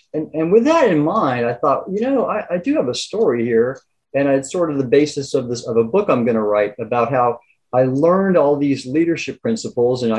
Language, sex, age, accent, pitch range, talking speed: English, male, 40-59, American, 115-145 Hz, 240 wpm